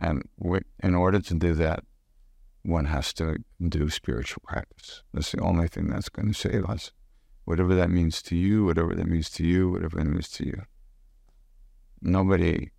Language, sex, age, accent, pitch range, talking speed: English, male, 50-69, American, 85-105 Hz, 175 wpm